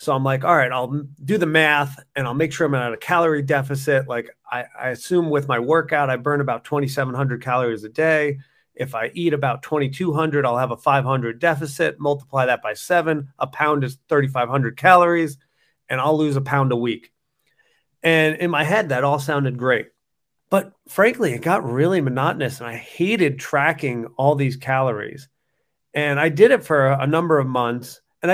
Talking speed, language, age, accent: 190 wpm, English, 30-49, American